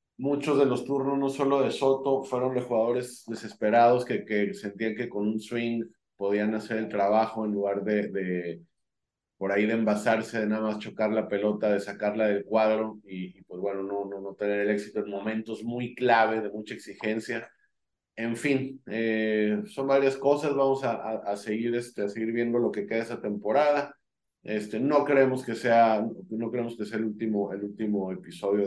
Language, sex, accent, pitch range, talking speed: Spanish, male, Mexican, 100-120 Hz, 195 wpm